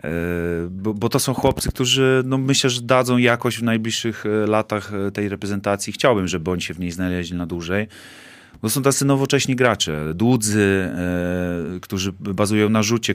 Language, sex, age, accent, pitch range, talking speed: Polish, male, 30-49, native, 95-115 Hz, 160 wpm